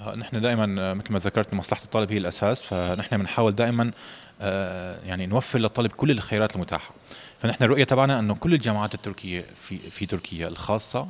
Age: 20-39